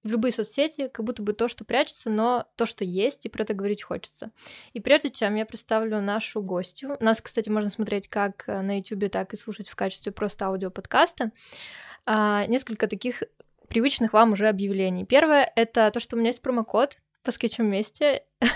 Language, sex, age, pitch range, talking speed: Russian, female, 20-39, 210-245 Hz, 180 wpm